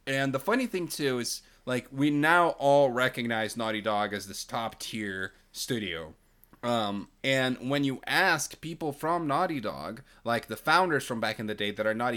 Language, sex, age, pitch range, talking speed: English, male, 20-39, 110-145 Hz, 185 wpm